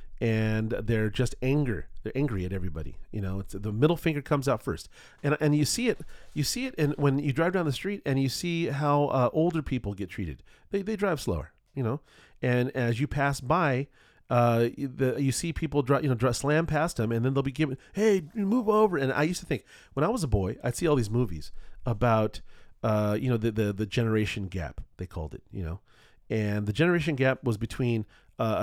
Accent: American